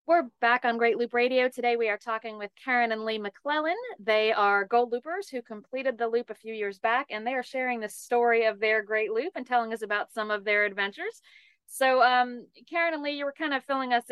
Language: English